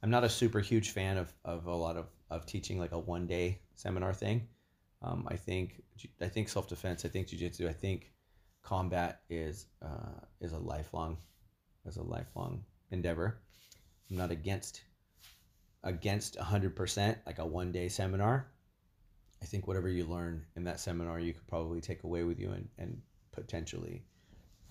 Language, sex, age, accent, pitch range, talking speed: English, male, 30-49, American, 85-100 Hz, 170 wpm